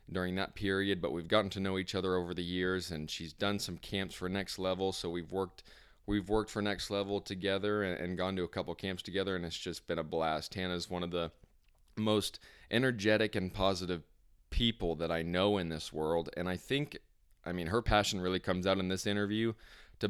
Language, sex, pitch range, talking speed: English, male, 85-100 Hz, 220 wpm